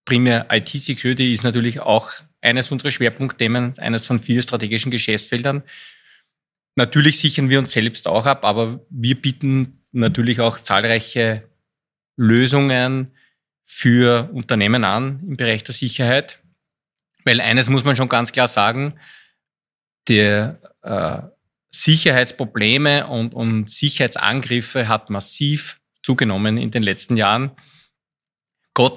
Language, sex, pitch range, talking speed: German, male, 115-140 Hz, 115 wpm